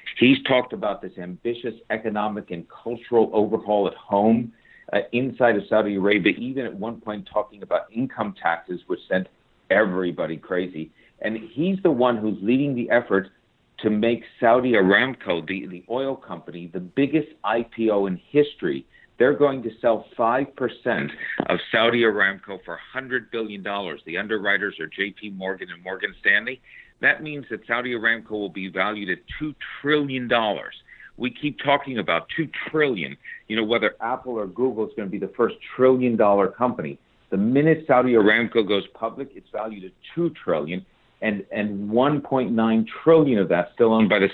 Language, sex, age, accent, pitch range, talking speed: English, male, 50-69, American, 100-125 Hz, 160 wpm